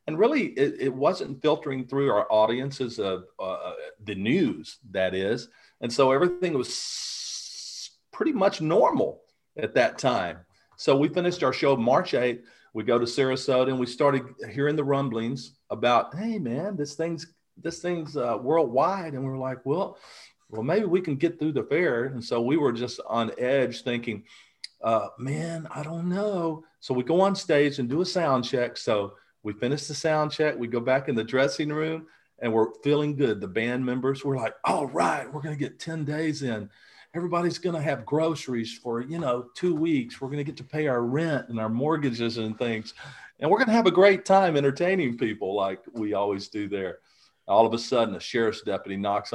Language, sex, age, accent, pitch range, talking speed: English, male, 40-59, American, 120-165 Hz, 195 wpm